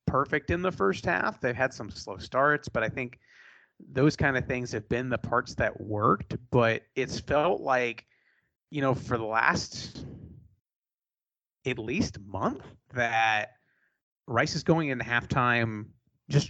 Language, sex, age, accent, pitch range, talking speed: English, male, 30-49, American, 110-130 Hz, 155 wpm